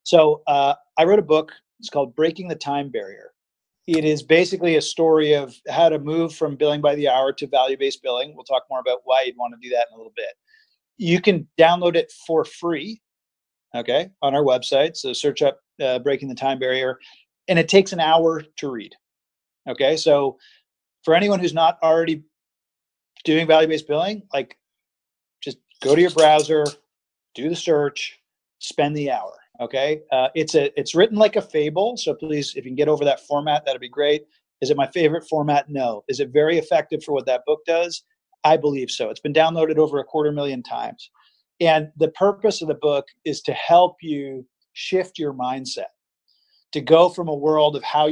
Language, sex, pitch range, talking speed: English, male, 140-175 Hz, 195 wpm